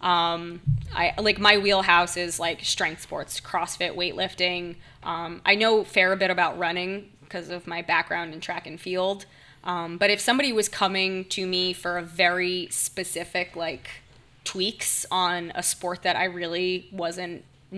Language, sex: English, female